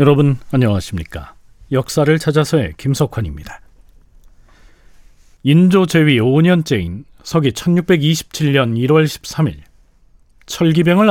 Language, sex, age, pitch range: Korean, male, 40-59, 115-170 Hz